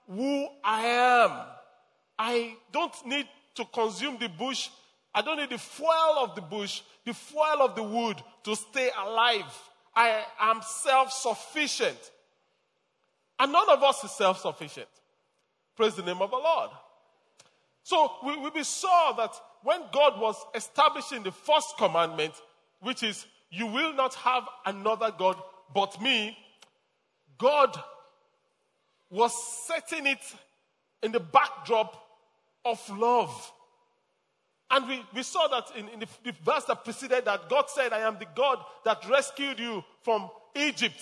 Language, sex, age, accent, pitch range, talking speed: English, male, 40-59, Nigerian, 220-300 Hz, 140 wpm